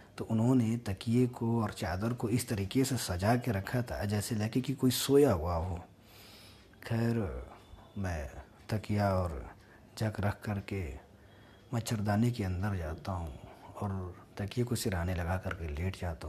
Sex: male